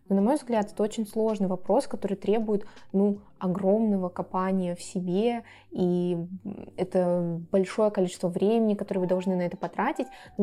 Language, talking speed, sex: Russian, 150 wpm, female